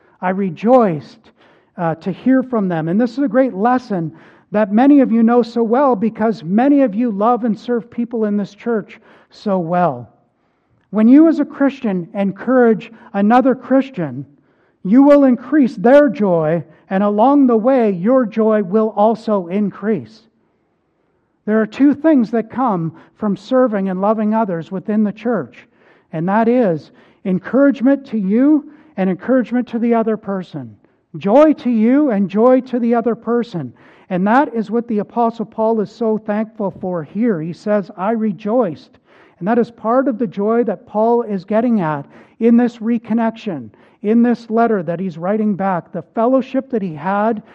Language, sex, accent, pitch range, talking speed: English, male, American, 190-245 Hz, 165 wpm